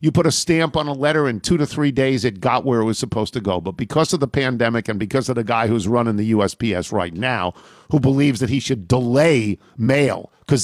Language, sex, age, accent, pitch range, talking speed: English, male, 50-69, American, 125-165 Hz, 250 wpm